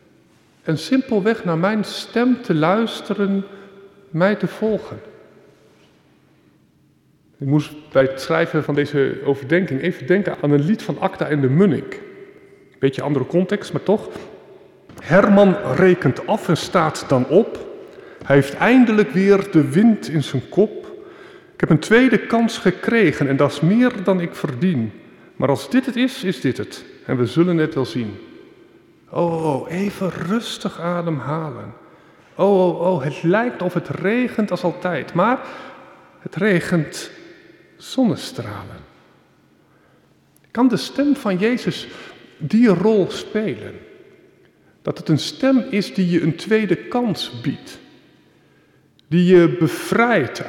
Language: Dutch